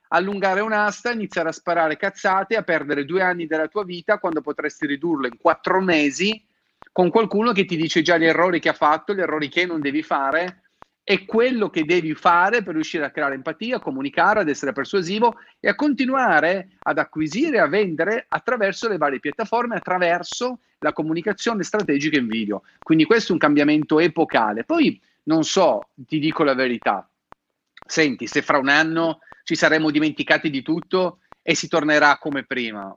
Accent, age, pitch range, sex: native, 40-59, 150-210 Hz, male